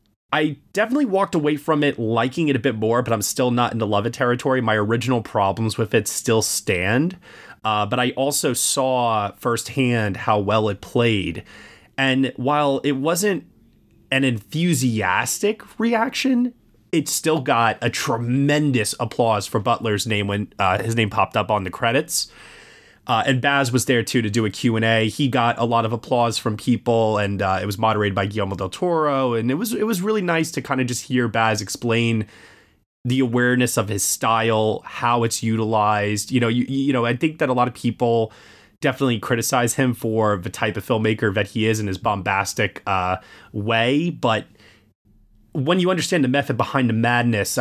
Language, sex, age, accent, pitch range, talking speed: English, male, 20-39, American, 110-135 Hz, 190 wpm